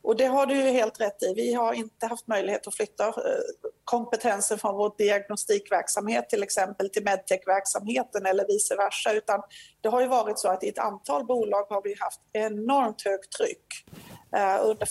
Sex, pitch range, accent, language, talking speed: female, 200-255 Hz, native, Swedish, 175 wpm